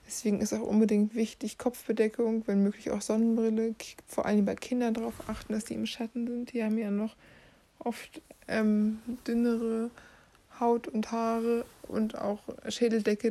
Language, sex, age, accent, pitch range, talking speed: German, female, 60-79, German, 210-235 Hz, 155 wpm